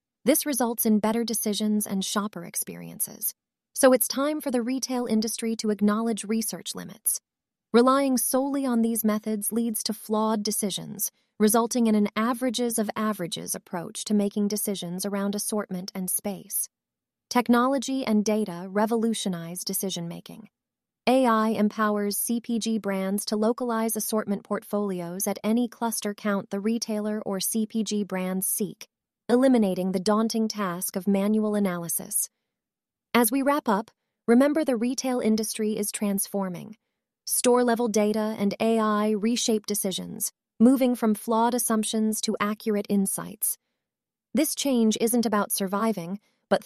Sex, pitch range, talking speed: female, 205-235 Hz, 125 wpm